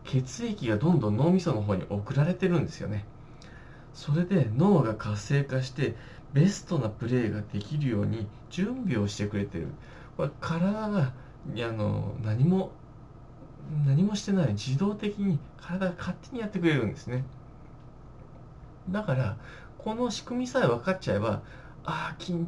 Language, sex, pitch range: Japanese, male, 115-170 Hz